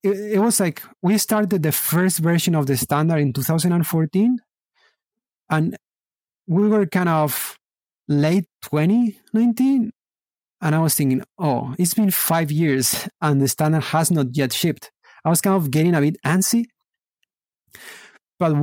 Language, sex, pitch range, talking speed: English, male, 145-185 Hz, 145 wpm